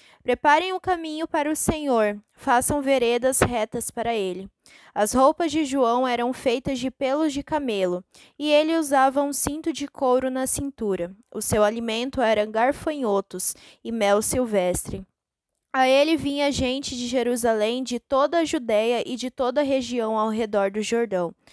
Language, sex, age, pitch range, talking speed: Portuguese, female, 10-29, 215-280 Hz, 160 wpm